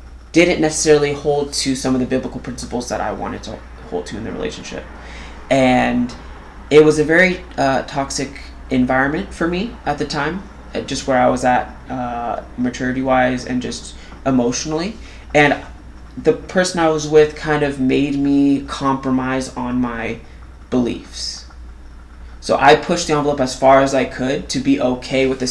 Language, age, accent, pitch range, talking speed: English, 20-39, American, 95-150 Hz, 165 wpm